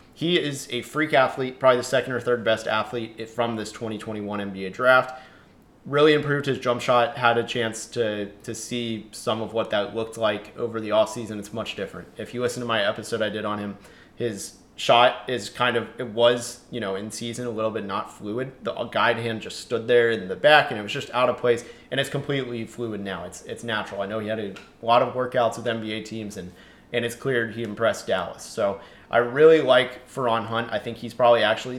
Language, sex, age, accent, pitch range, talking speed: English, male, 30-49, American, 110-130 Hz, 225 wpm